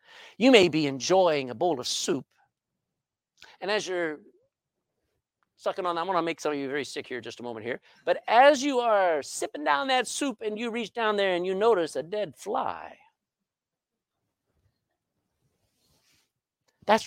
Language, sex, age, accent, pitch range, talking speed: English, male, 50-69, American, 175-280 Hz, 165 wpm